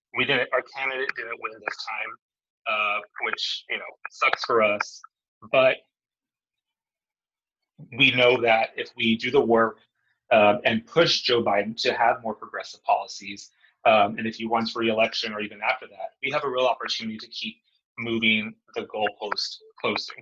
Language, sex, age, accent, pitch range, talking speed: English, male, 30-49, American, 110-125 Hz, 165 wpm